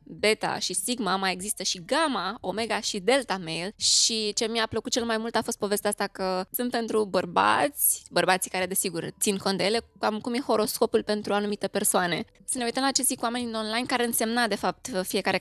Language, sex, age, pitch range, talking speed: Romanian, female, 20-39, 190-235 Hz, 205 wpm